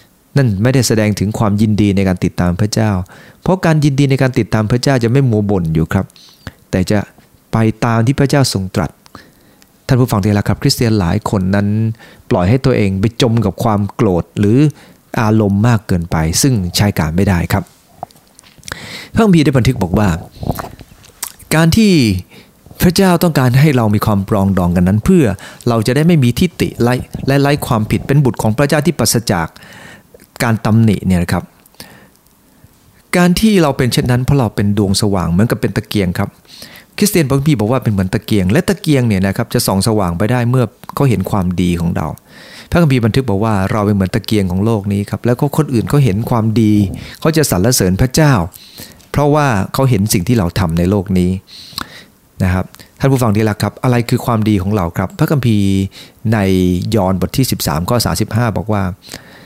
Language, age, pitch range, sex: English, 30-49, 100-130 Hz, male